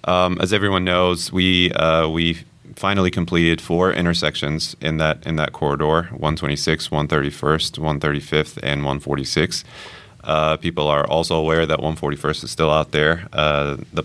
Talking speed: 165 wpm